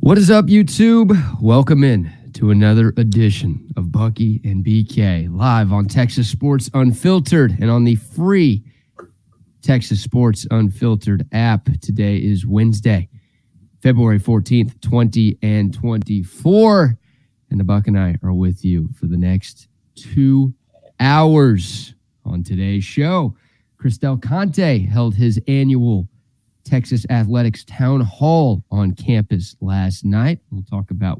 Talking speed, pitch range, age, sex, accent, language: 125 wpm, 105-130 Hz, 30-49, male, American, English